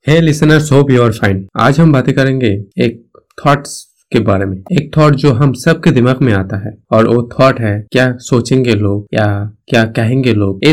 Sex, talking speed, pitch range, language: male, 195 wpm, 105-135 Hz, Hindi